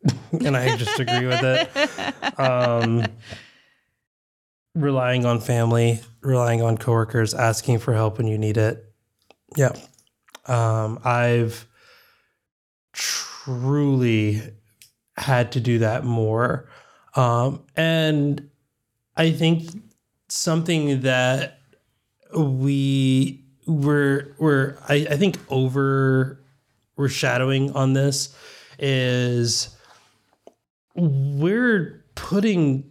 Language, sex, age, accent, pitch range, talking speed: English, male, 20-39, American, 120-145 Hz, 90 wpm